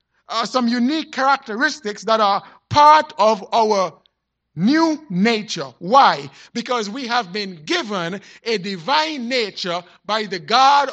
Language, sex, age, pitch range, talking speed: English, male, 50-69, 185-260 Hz, 125 wpm